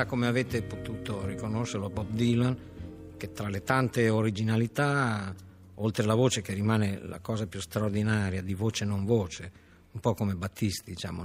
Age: 50-69